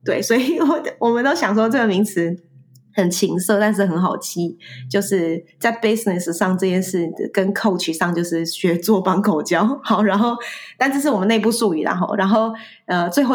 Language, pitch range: Chinese, 175-210 Hz